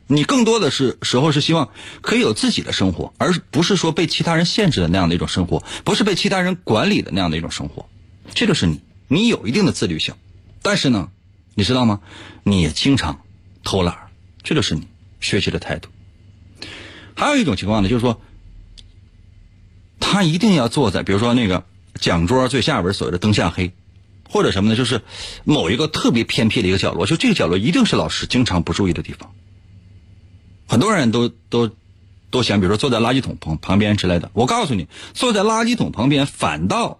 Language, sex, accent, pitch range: Chinese, male, native, 95-140 Hz